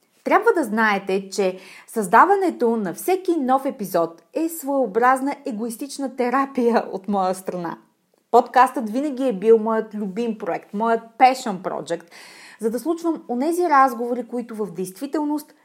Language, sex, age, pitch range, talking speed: Bulgarian, female, 30-49, 200-260 Hz, 130 wpm